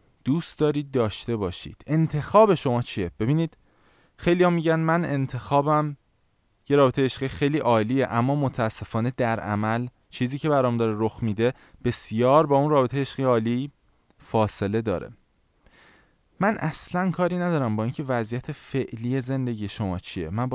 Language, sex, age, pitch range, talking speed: Persian, male, 20-39, 110-155 Hz, 145 wpm